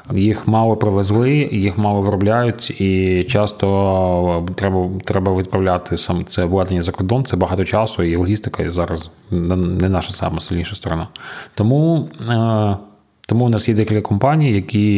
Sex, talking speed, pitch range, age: male, 135 wpm, 90-115 Hz, 30-49